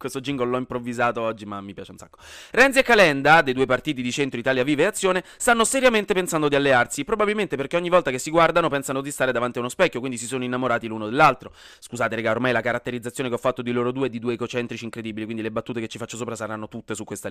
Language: Italian